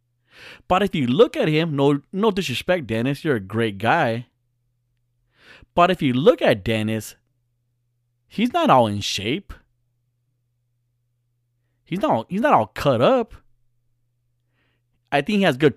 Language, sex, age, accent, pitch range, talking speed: English, male, 30-49, American, 120-165 Hz, 140 wpm